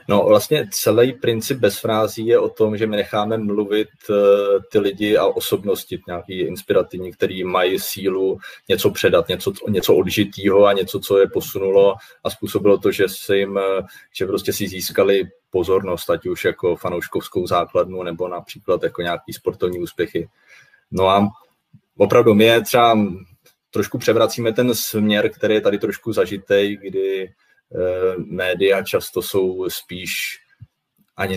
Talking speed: 140 wpm